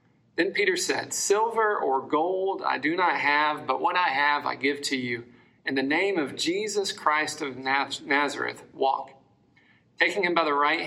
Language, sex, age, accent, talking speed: English, male, 40-59, American, 175 wpm